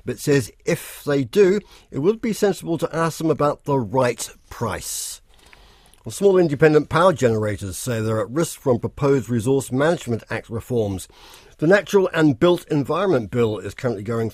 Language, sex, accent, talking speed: English, male, British, 165 wpm